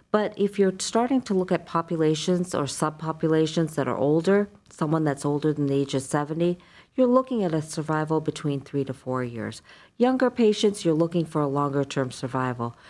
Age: 50-69